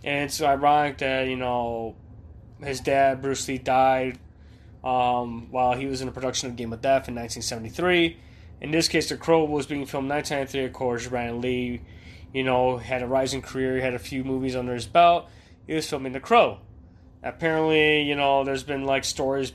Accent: American